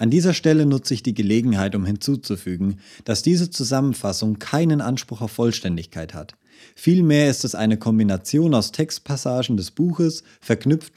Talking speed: 150 wpm